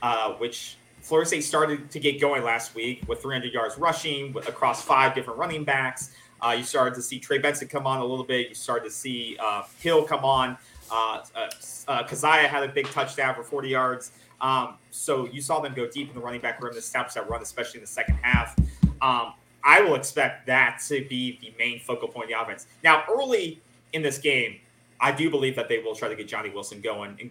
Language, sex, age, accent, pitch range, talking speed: English, male, 30-49, American, 120-150 Hz, 225 wpm